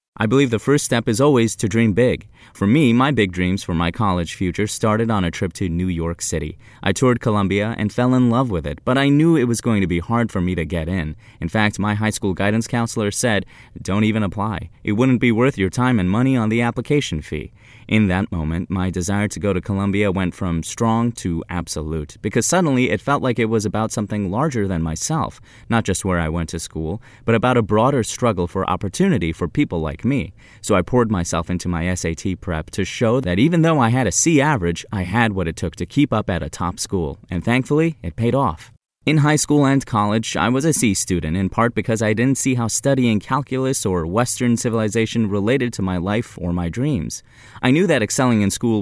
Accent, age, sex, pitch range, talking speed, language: American, 30-49, male, 90-120 Hz, 230 wpm, English